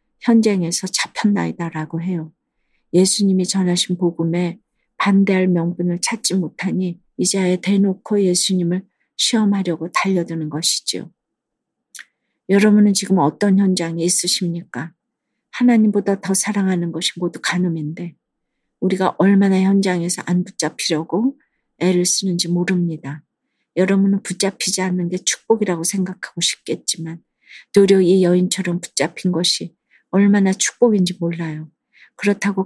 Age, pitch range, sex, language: 40-59, 170-195 Hz, female, Korean